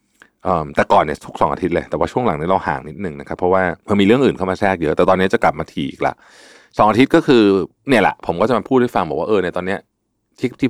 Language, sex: Thai, male